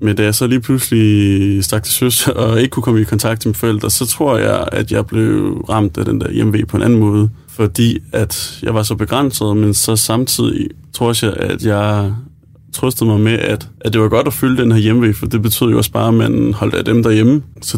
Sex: male